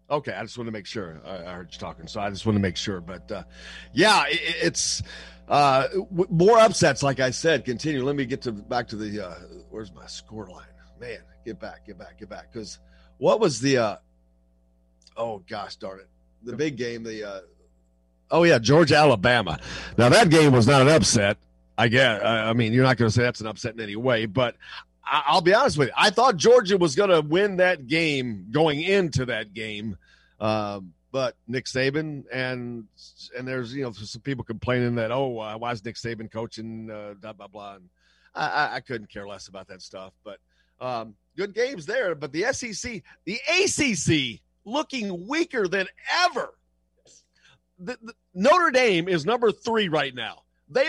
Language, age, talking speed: English, 40-59, 195 wpm